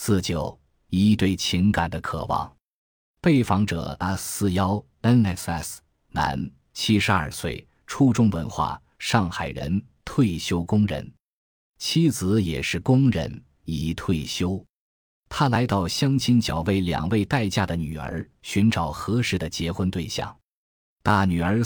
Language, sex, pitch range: Chinese, male, 85-110 Hz